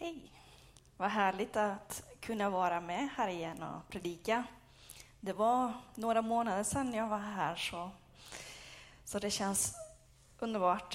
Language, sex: Swedish, female